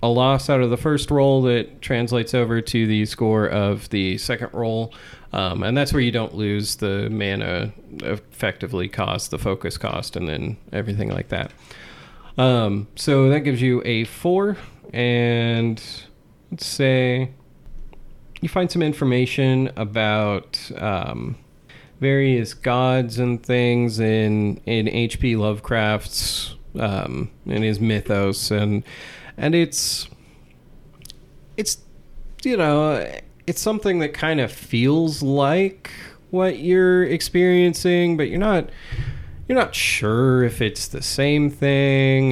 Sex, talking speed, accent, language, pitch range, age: male, 130 wpm, American, English, 110-140 Hz, 30-49